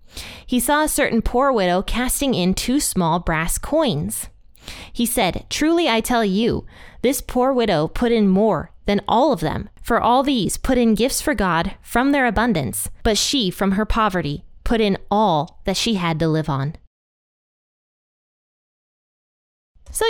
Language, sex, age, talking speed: English, female, 20-39, 160 wpm